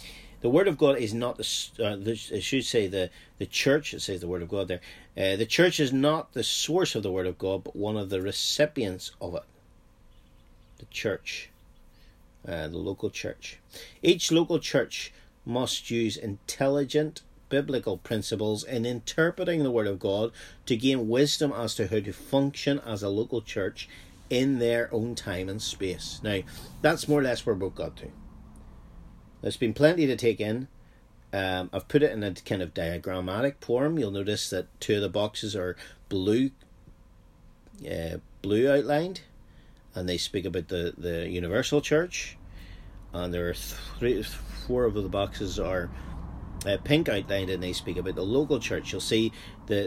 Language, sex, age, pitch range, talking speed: English, male, 40-59, 90-130 Hz, 175 wpm